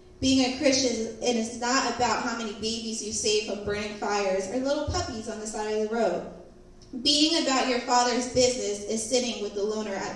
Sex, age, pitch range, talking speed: female, 20-39, 215-265 Hz, 205 wpm